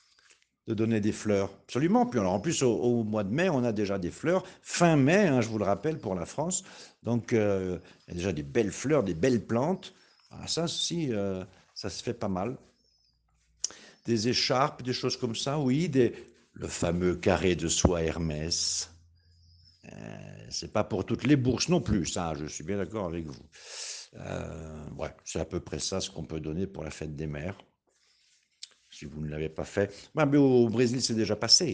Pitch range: 95-145 Hz